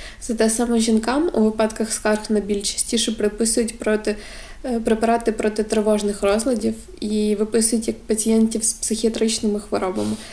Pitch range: 200-225 Hz